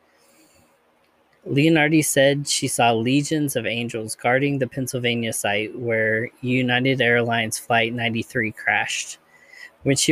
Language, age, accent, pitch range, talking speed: English, 20-39, American, 115-140 Hz, 115 wpm